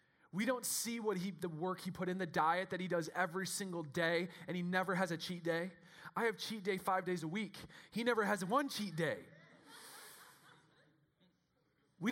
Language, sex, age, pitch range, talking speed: English, male, 30-49, 160-195 Hz, 200 wpm